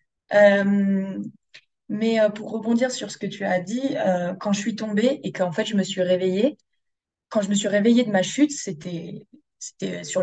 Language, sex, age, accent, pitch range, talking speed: French, female, 20-39, French, 185-230 Hz, 200 wpm